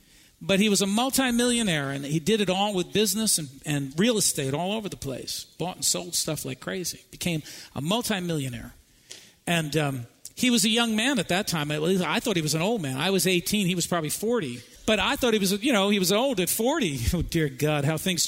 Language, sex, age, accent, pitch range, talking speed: English, male, 50-69, American, 145-195 Hz, 235 wpm